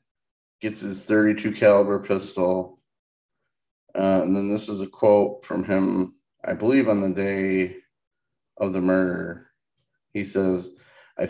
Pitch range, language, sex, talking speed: 95-105 Hz, English, male, 135 wpm